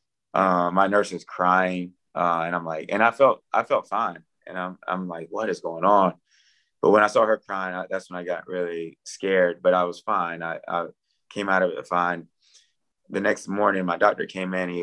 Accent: American